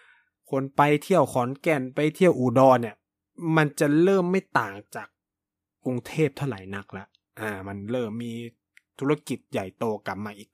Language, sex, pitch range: Thai, male, 100-135 Hz